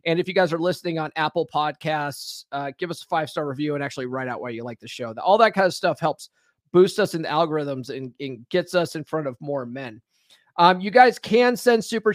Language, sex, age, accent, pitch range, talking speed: English, male, 30-49, American, 150-200 Hz, 245 wpm